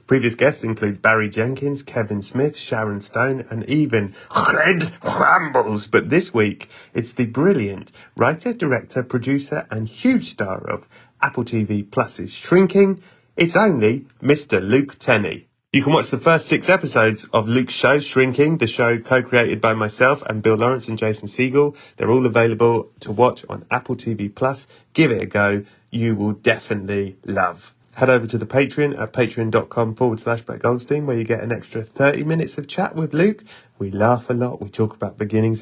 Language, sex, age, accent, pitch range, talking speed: English, male, 30-49, British, 110-135 Hz, 175 wpm